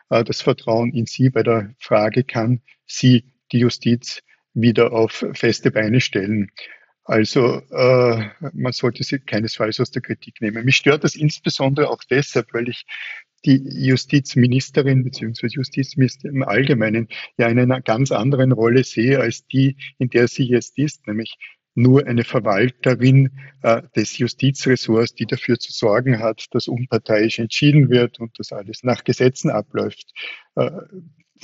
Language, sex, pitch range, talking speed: German, male, 115-135 Hz, 145 wpm